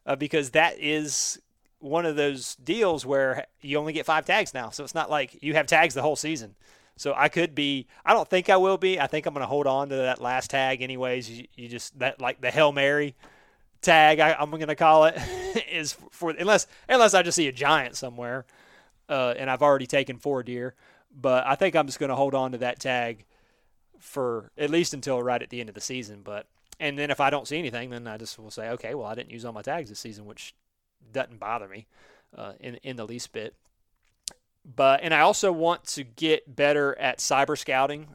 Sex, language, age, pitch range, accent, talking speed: male, English, 30-49, 125-155 Hz, American, 225 wpm